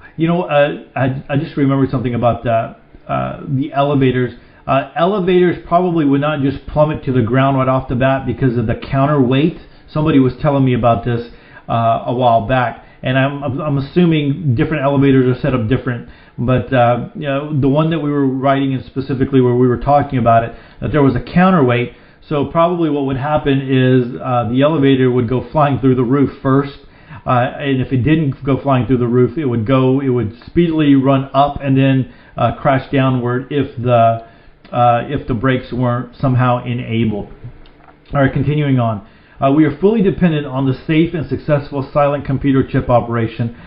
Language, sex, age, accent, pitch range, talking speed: English, male, 40-59, American, 125-145 Hz, 190 wpm